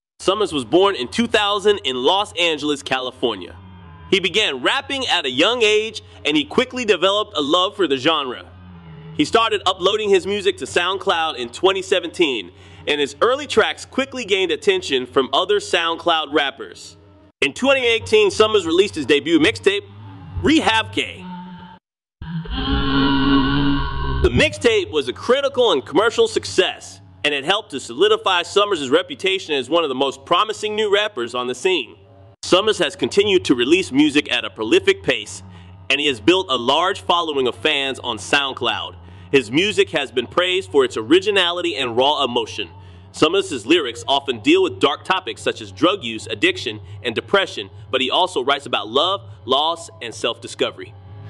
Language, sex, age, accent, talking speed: English, male, 30-49, American, 160 wpm